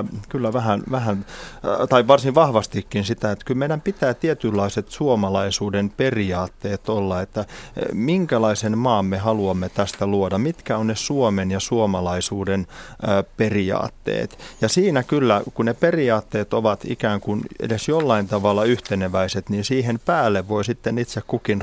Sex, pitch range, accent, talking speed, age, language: male, 100-120 Hz, native, 135 wpm, 30-49, Finnish